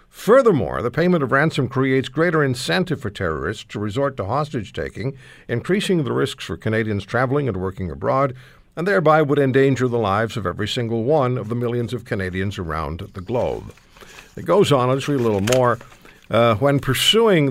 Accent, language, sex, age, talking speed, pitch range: American, English, male, 60-79, 180 wpm, 105-140 Hz